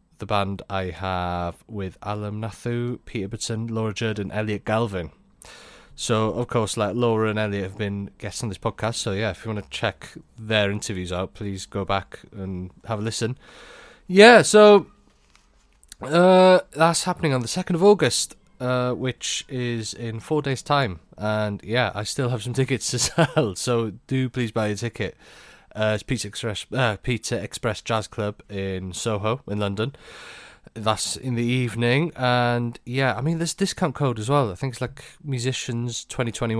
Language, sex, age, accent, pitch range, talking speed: English, male, 30-49, British, 105-140 Hz, 180 wpm